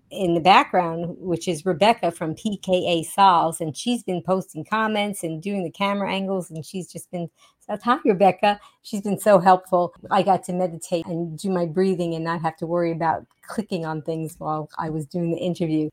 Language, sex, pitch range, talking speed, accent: English, female, 170-205 Hz, 200 wpm, American